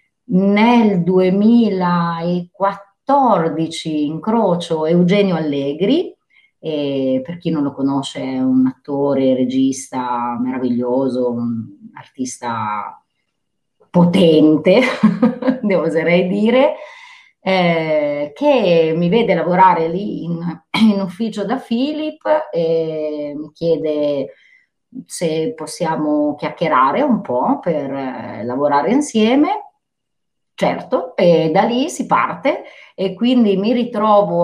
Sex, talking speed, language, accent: female, 95 wpm, Italian, native